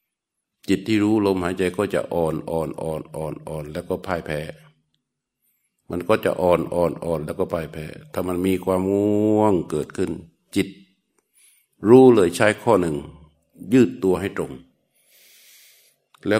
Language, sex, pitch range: Thai, male, 85-105 Hz